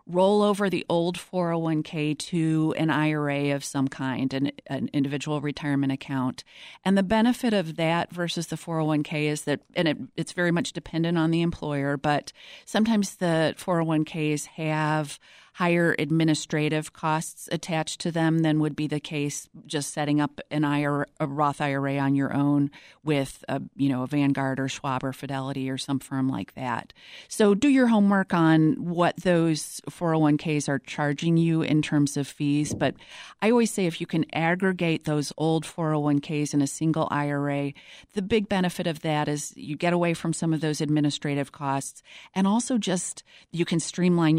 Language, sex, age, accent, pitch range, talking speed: English, female, 40-59, American, 145-170 Hz, 175 wpm